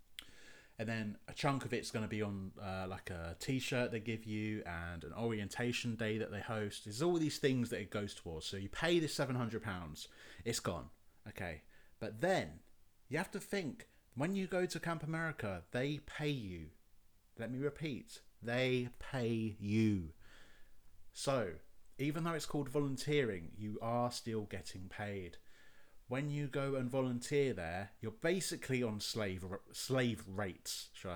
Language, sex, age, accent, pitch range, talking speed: English, male, 30-49, British, 100-135 Hz, 165 wpm